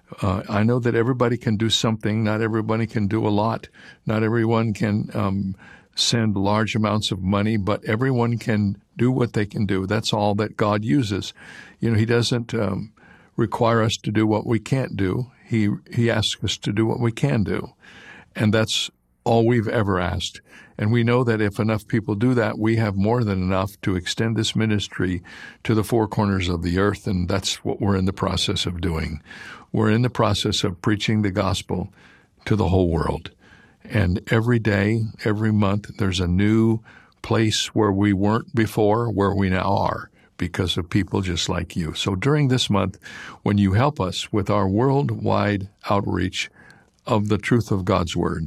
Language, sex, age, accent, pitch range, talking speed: English, male, 60-79, American, 100-115 Hz, 190 wpm